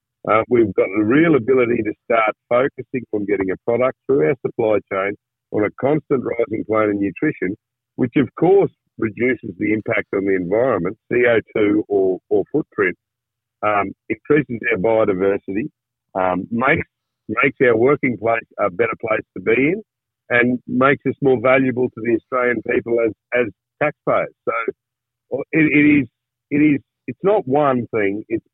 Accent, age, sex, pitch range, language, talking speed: Australian, 50-69, male, 110-140 Hz, English, 160 wpm